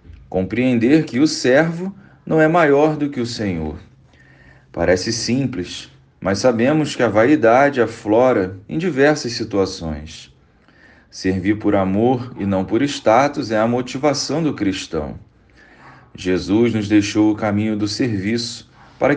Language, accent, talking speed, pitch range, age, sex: Portuguese, Brazilian, 130 wpm, 105-145 Hz, 40-59, male